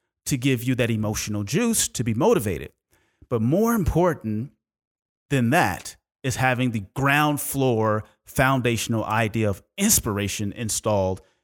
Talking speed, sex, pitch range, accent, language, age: 125 wpm, male, 110-150 Hz, American, English, 30-49